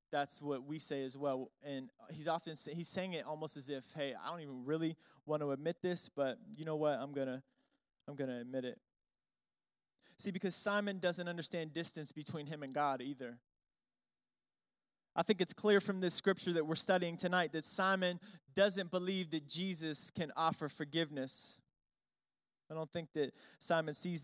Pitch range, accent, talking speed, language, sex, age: 150-195 Hz, American, 185 wpm, English, male, 20-39